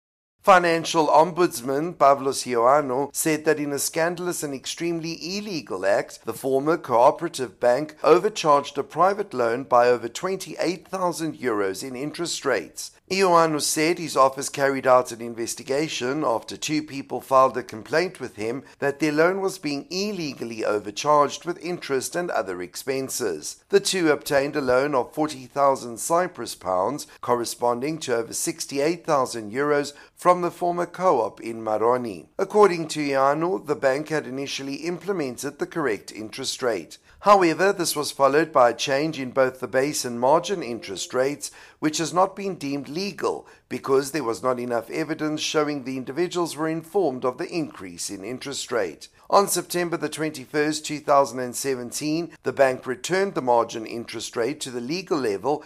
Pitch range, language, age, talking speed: 130-170 Hz, English, 60-79, 155 wpm